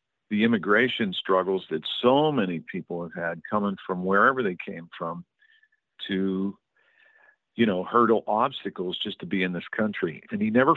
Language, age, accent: English, 50-69, American